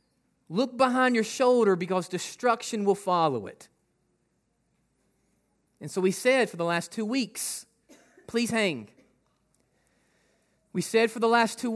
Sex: male